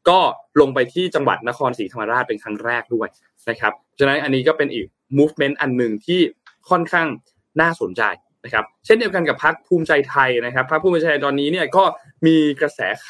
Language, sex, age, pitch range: Thai, male, 20-39, 125-175 Hz